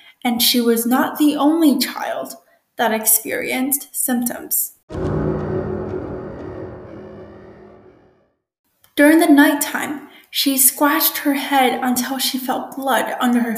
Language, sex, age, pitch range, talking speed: English, female, 10-29, 240-290 Hz, 100 wpm